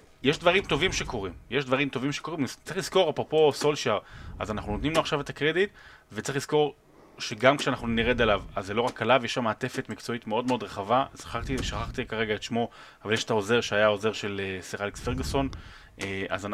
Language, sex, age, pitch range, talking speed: Hebrew, male, 30-49, 105-135 Hz, 190 wpm